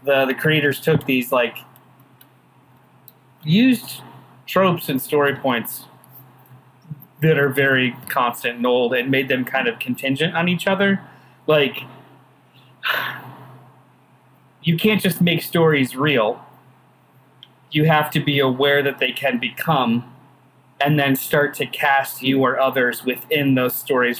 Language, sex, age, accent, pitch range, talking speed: English, male, 30-49, American, 130-155 Hz, 130 wpm